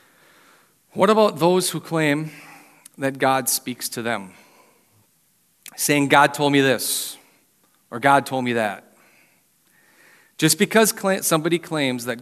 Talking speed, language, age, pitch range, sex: 125 wpm, English, 40-59, 125-155 Hz, male